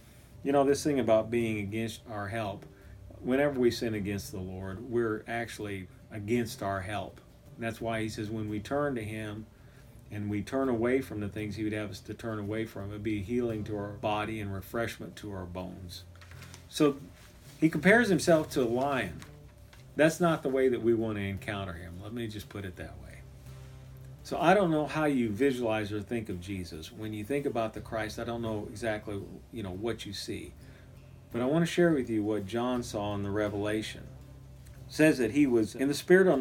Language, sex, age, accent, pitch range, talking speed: English, male, 40-59, American, 100-125 Hz, 210 wpm